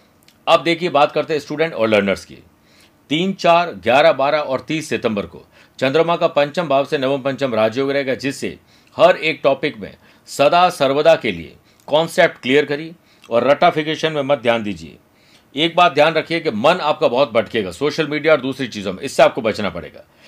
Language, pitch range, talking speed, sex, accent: Hindi, 130-160 Hz, 180 wpm, male, native